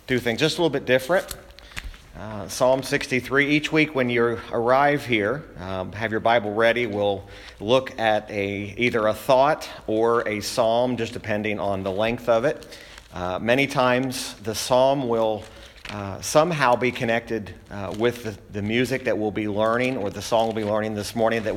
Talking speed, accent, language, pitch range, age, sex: 185 wpm, American, English, 105-130 Hz, 40-59, male